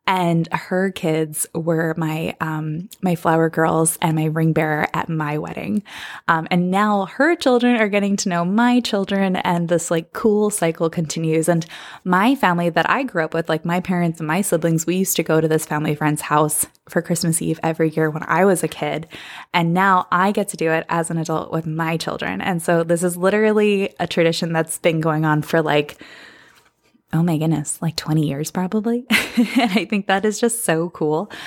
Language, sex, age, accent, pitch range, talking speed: English, female, 20-39, American, 160-205 Hz, 205 wpm